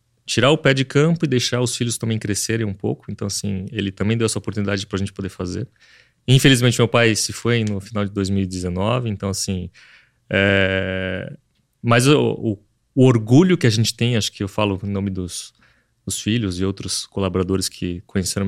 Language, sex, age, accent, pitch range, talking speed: Portuguese, male, 30-49, Brazilian, 100-120 Hz, 190 wpm